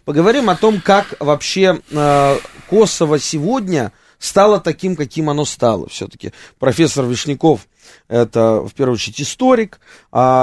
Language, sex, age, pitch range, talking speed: Russian, male, 20-39, 125-160 Hz, 125 wpm